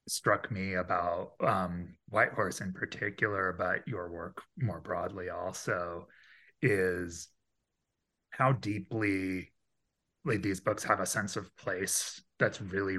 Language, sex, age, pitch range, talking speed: English, male, 30-49, 95-125 Hz, 125 wpm